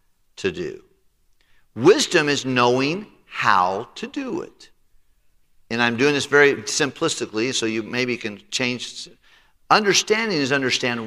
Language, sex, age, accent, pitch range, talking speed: English, male, 50-69, American, 110-140 Hz, 125 wpm